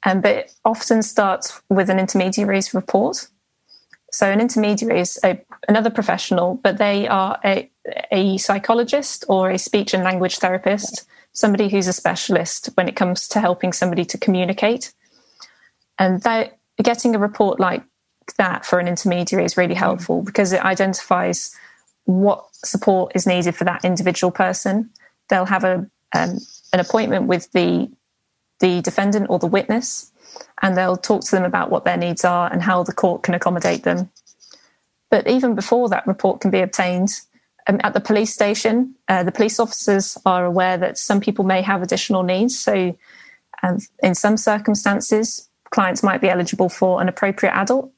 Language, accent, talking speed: English, British, 165 wpm